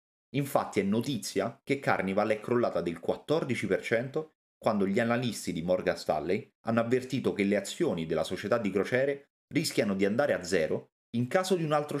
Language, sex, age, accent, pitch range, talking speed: Italian, male, 30-49, native, 95-145 Hz, 170 wpm